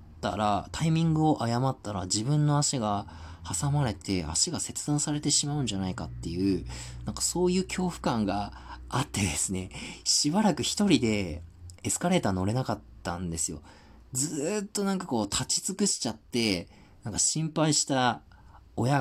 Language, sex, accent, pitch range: Japanese, male, native, 90-135 Hz